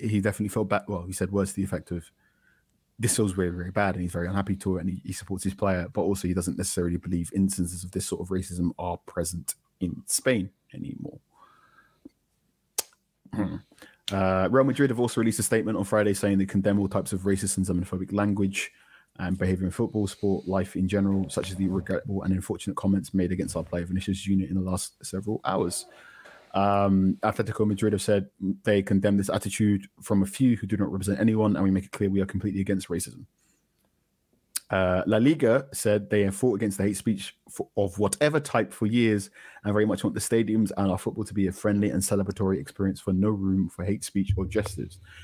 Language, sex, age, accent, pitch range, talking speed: English, male, 20-39, British, 95-105 Hz, 215 wpm